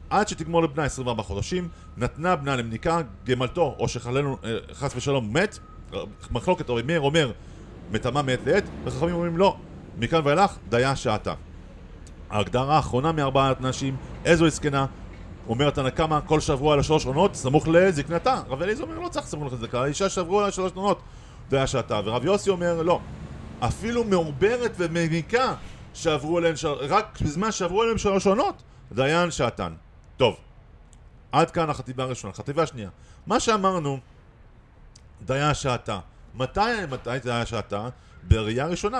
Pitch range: 115-170 Hz